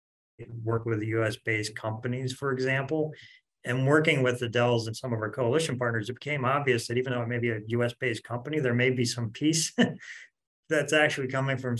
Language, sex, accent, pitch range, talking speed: English, male, American, 105-125 Hz, 195 wpm